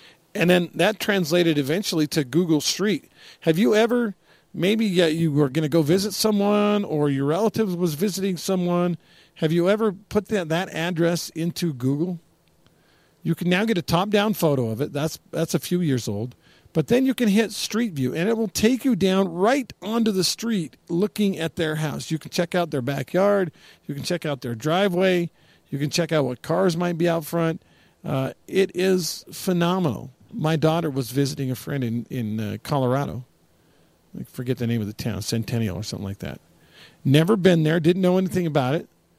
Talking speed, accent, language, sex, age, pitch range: 195 wpm, American, English, male, 50-69, 135-185 Hz